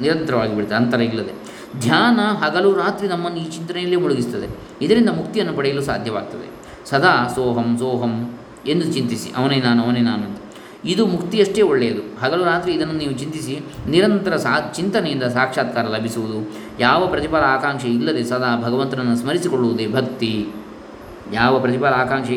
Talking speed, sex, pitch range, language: 130 wpm, male, 120-175 Hz, Kannada